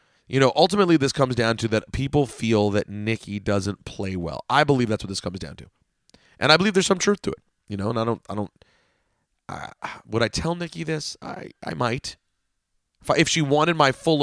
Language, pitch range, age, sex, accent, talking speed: English, 100-130 Hz, 30-49, male, American, 230 wpm